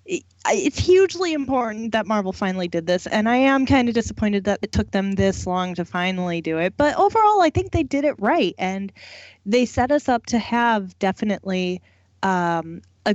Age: 20-39